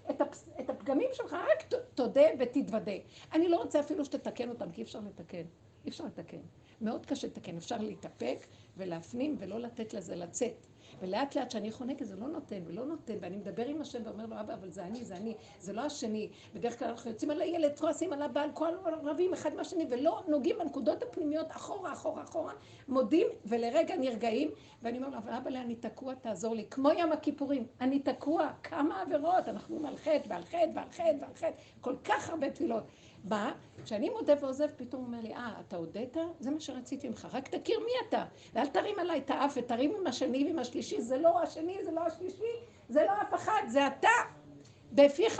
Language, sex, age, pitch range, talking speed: Hebrew, female, 60-79, 230-320 Hz, 195 wpm